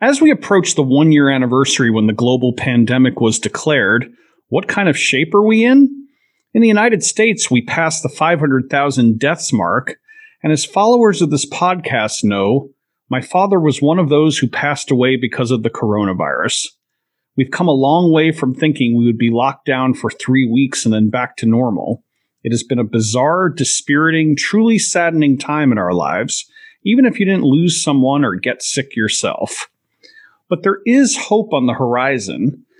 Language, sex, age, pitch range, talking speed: English, male, 40-59, 125-175 Hz, 180 wpm